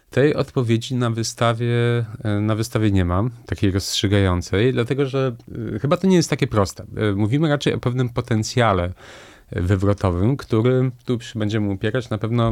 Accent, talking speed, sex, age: native, 150 wpm, male, 30-49